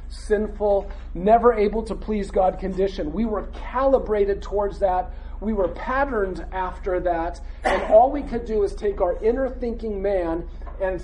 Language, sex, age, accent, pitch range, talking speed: English, male, 40-59, American, 165-220 Hz, 160 wpm